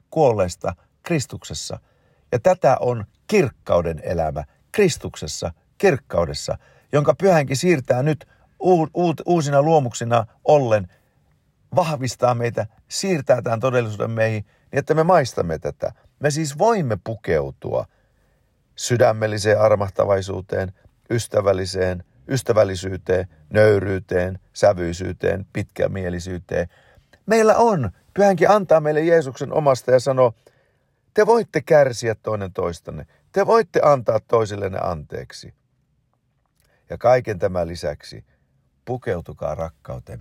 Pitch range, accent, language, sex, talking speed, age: 95-150 Hz, Finnish, Turkish, male, 95 wpm, 50-69